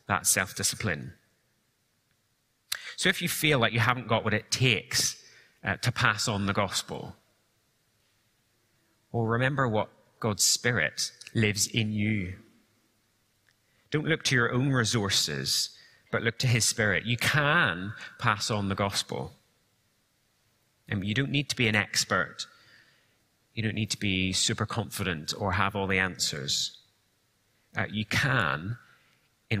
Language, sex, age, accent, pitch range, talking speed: English, male, 30-49, British, 100-120 Hz, 140 wpm